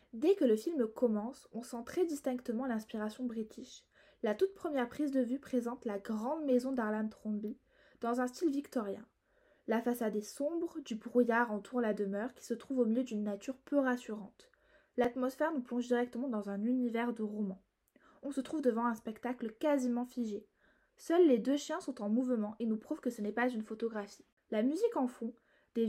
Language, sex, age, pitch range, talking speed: French, female, 20-39, 220-275 Hz, 190 wpm